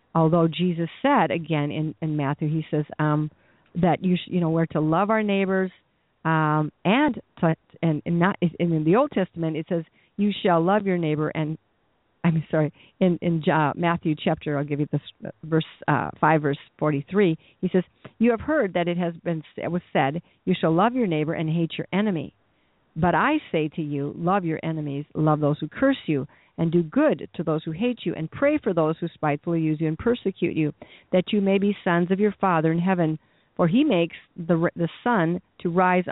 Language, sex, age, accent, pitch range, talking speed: English, female, 50-69, American, 155-195 Hz, 210 wpm